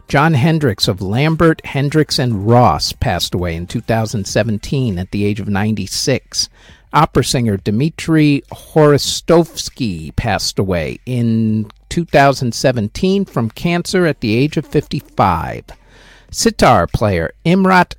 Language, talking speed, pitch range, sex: English, 115 wpm, 110-165 Hz, male